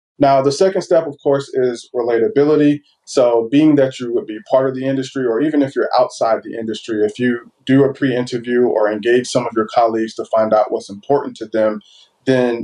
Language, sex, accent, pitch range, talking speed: English, male, American, 110-135 Hz, 210 wpm